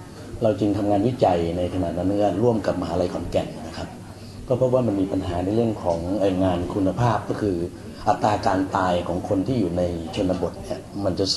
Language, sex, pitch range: Thai, male, 95-110 Hz